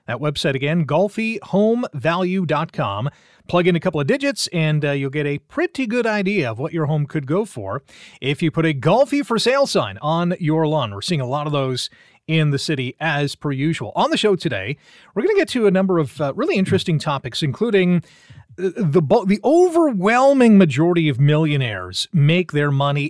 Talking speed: 190 wpm